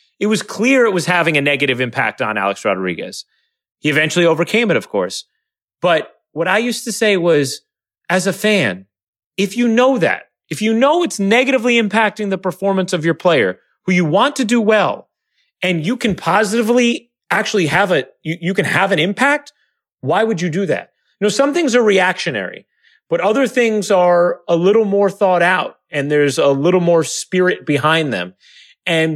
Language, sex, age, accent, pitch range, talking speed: English, male, 30-49, American, 150-210 Hz, 185 wpm